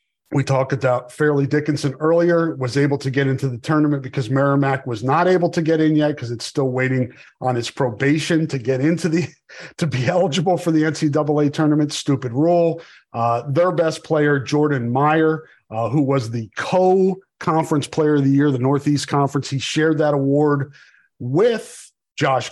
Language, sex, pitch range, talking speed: English, male, 135-160 Hz, 175 wpm